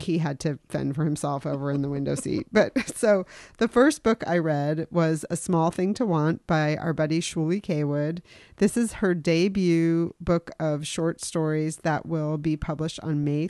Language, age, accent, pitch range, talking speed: English, 40-59, American, 150-175 Hz, 190 wpm